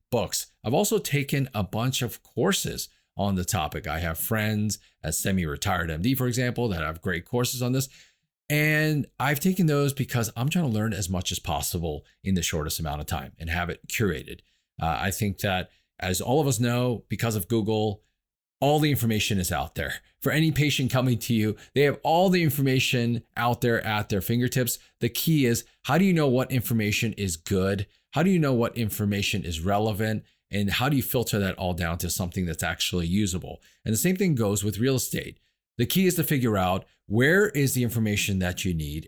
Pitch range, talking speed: 95-130 Hz, 205 wpm